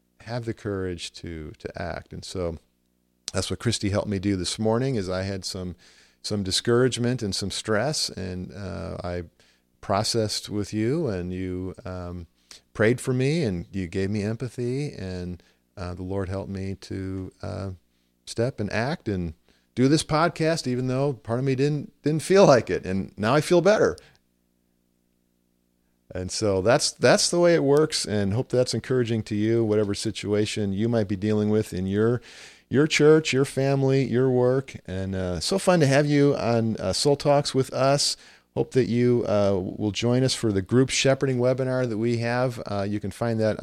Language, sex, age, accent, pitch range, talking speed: English, male, 40-59, American, 95-125 Hz, 185 wpm